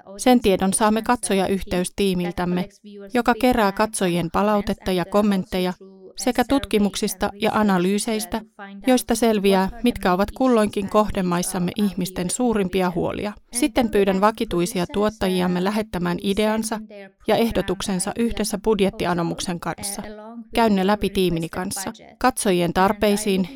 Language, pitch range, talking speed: Finnish, 185-220 Hz, 105 wpm